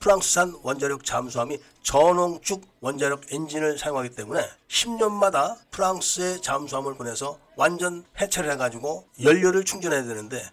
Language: Korean